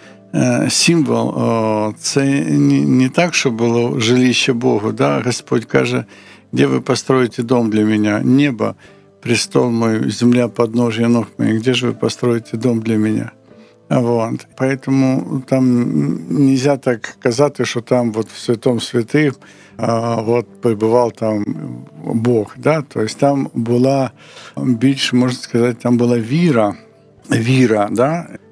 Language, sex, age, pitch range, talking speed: Ukrainian, male, 60-79, 110-125 Hz, 125 wpm